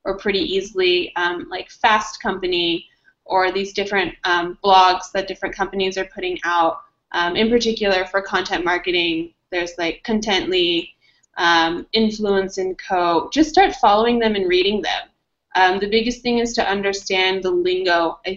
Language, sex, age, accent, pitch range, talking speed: English, female, 20-39, American, 185-220 Hz, 155 wpm